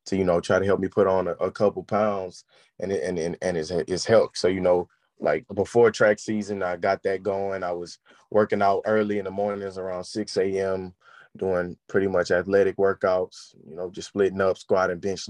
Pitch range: 90-105 Hz